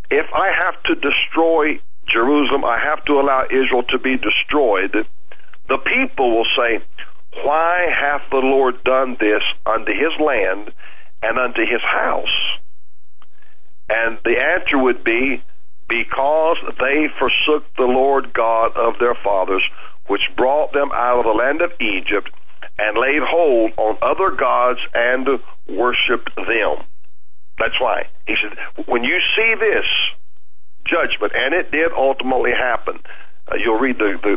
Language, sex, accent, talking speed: English, male, American, 145 wpm